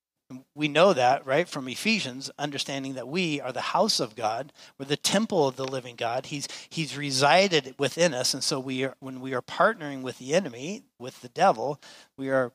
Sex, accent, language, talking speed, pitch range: male, American, English, 205 wpm, 130-175 Hz